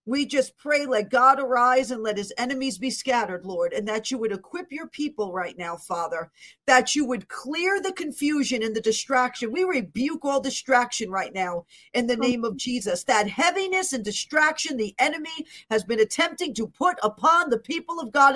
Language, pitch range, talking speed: English, 220-290 Hz, 195 wpm